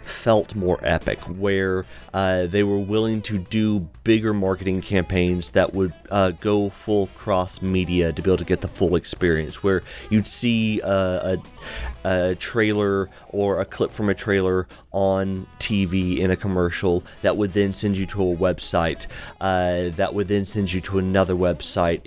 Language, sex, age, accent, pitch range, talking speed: English, male, 30-49, American, 90-100 Hz, 170 wpm